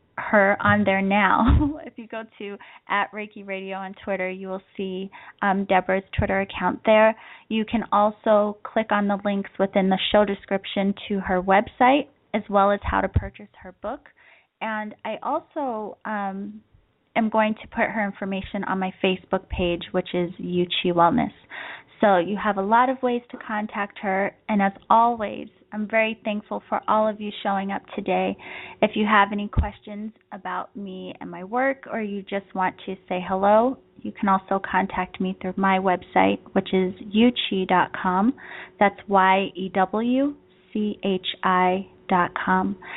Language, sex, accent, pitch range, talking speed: English, female, American, 190-215 Hz, 160 wpm